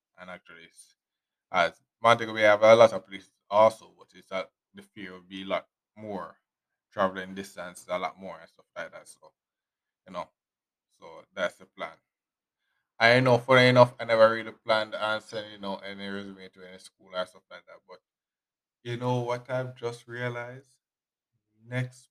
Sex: male